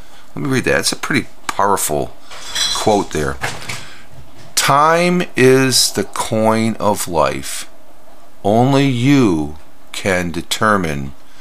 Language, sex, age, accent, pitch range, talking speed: English, male, 50-69, American, 80-110 Hz, 105 wpm